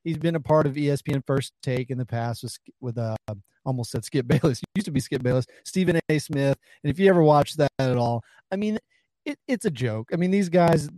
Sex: male